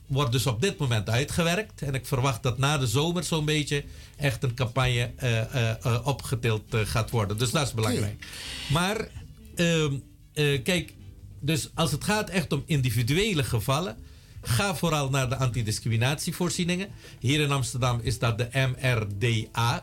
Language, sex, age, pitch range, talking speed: Dutch, male, 50-69, 120-155 Hz, 155 wpm